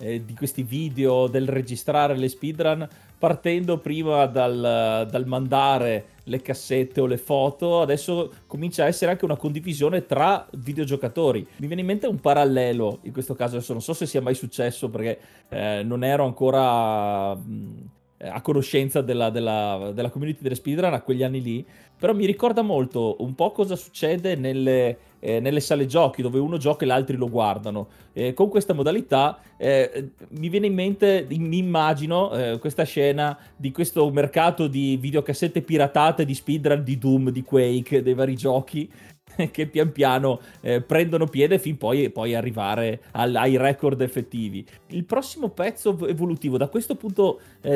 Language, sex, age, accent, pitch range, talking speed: Italian, male, 30-49, native, 125-160 Hz, 165 wpm